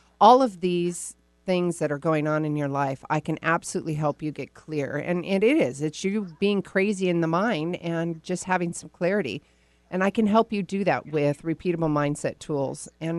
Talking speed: 210 wpm